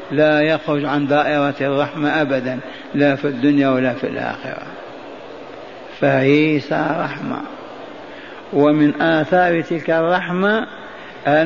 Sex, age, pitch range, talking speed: male, 60-79, 150-170 Hz, 95 wpm